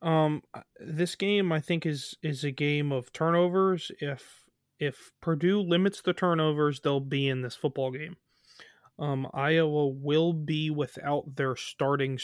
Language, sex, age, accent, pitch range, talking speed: English, male, 20-39, American, 135-165 Hz, 145 wpm